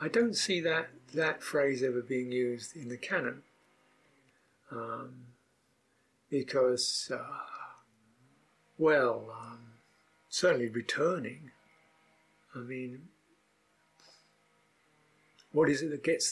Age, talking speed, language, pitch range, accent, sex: 60-79, 95 wpm, English, 125-150 Hz, British, male